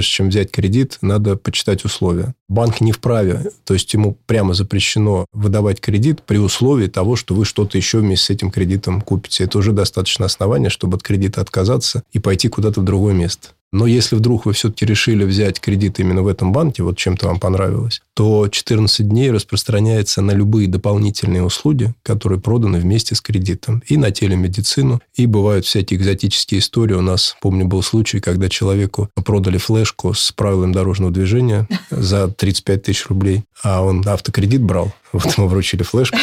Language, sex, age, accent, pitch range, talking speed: Russian, male, 20-39, native, 95-115 Hz, 170 wpm